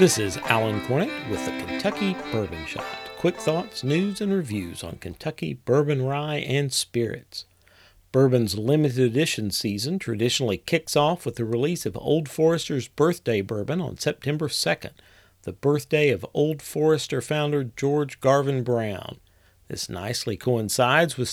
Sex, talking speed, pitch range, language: male, 145 wpm, 110-150 Hz, English